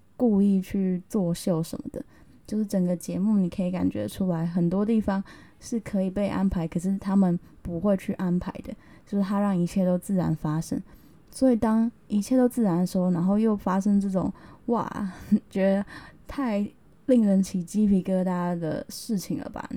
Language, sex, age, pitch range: Chinese, female, 10-29, 180-210 Hz